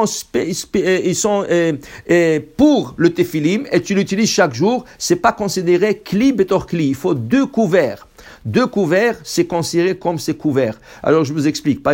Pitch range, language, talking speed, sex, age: 150-195 Hz, English, 185 wpm, male, 60-79